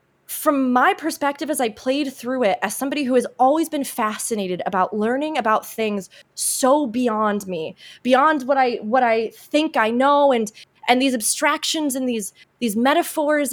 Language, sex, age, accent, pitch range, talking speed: English, female, 20-39, American, 230-290 Hz, 170 wpm